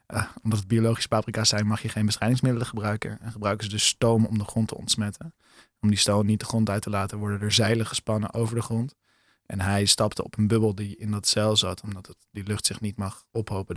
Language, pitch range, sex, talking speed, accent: Dutch, 100-115 Hz, male, 245 wpm, Dutch